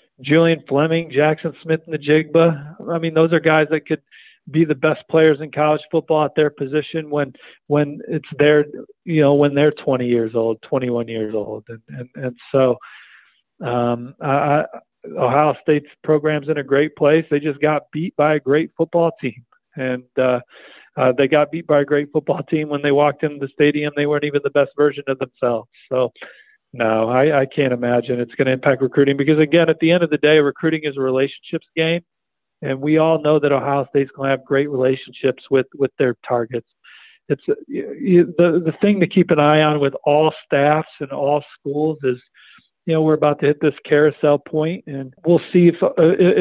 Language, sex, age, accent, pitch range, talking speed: English, male, 40-59, American, 135-160 Hz, 205 wpm